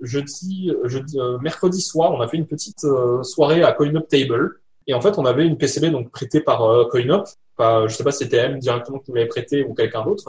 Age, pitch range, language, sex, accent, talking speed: 20-39, 130-175 Hz, French, male, French, 235 wpm